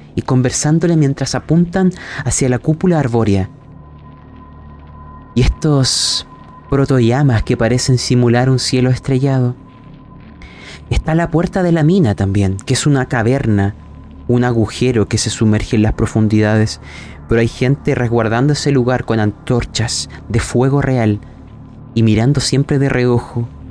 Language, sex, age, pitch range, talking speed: Spanish, male, 30-49, 100-145 Hz, 130 wpm